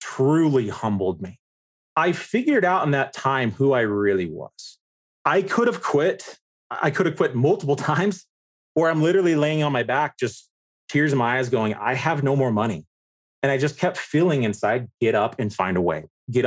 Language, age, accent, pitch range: English, 30-49, American, 115-160 Hz